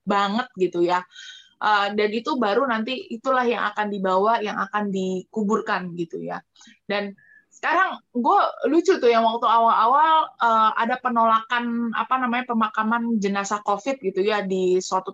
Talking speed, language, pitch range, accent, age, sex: 145 wpm, Indonesian, 210-285 Hz, native, 20-39, female